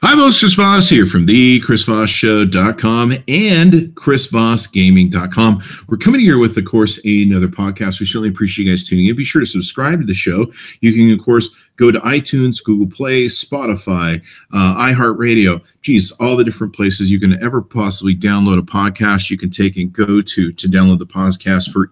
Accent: American